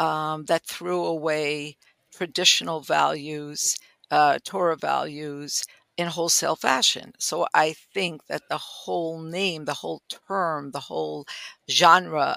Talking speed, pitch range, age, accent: 120 wpm, 155-200 Hz, 50-69, American